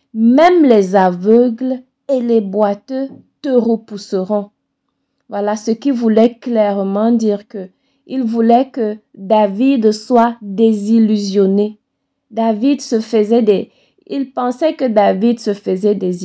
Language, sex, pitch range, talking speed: French, female, 205-255 Hz, 115 wpm